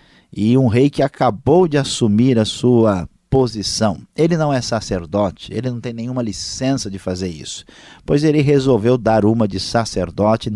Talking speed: 165 wpm